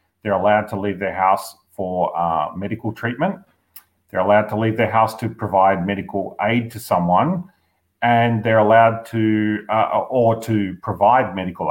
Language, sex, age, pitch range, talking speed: English, male, 40-59, 95-115 Hz, 160 wpm